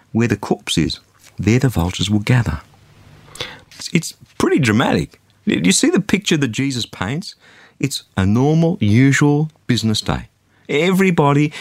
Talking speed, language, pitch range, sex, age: 145 wpm, English, 105-160 Hz, male, 50-69